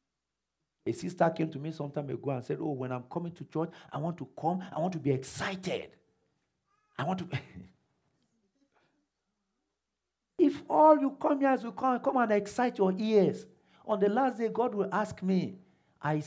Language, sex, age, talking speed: English, male, 50-69, 190 wpm